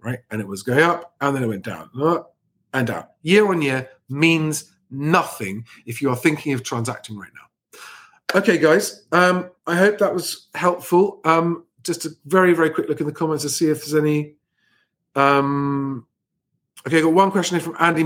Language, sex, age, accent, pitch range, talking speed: English, male, 40-59, British, 125-165 Hz, 195 wpm